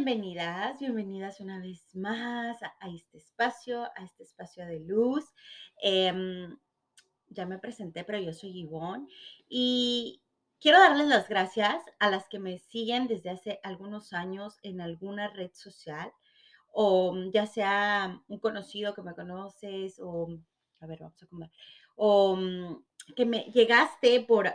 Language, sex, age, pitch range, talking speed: Spanish, female, 30-49, 180-235 Hz, 140 wpm